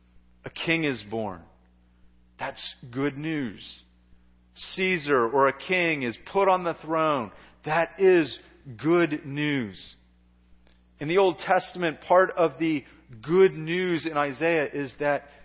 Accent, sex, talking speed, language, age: American, male, 130 wpm, English, 40-59